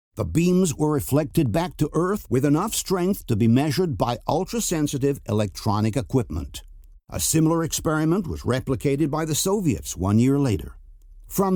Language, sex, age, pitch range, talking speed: English, male, 60-79, 110-155 Hz, 150 wpm